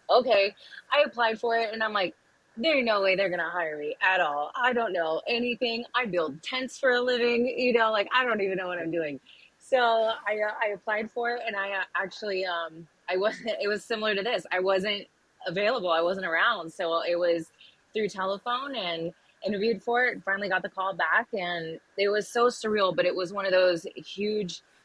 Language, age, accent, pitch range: English, 20-39, American, 170-220 Hz